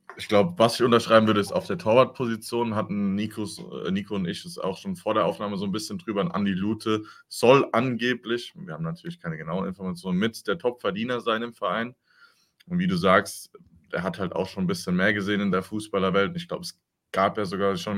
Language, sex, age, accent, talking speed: German, male, 20-39, German, 220 wpm